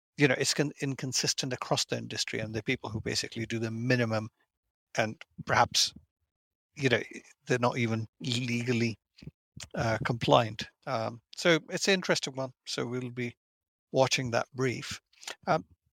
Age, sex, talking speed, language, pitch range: 50-69, male, 145 wpm, English, 110-130 Hz